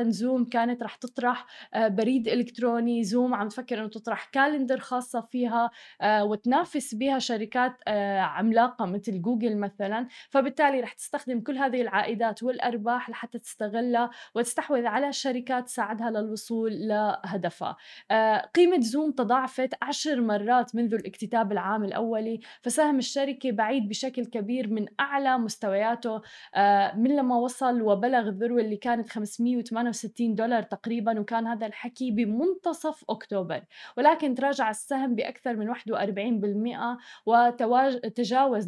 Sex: female